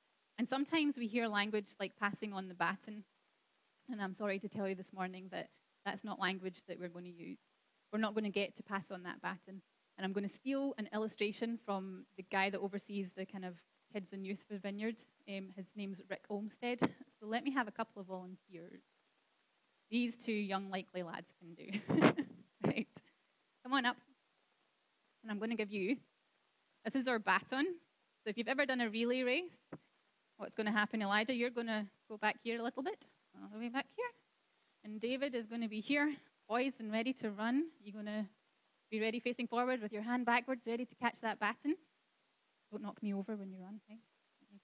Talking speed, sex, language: 205 wpm, female, English